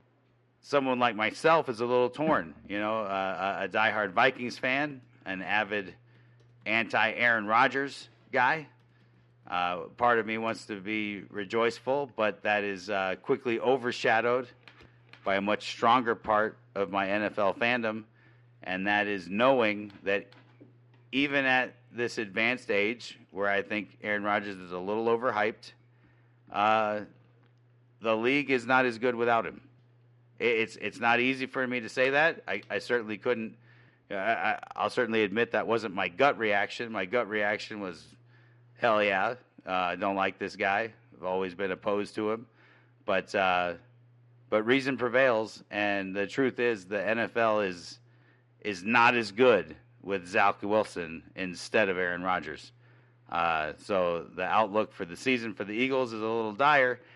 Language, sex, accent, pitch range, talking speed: English, male, American, 105-125 Hz, 155 wpm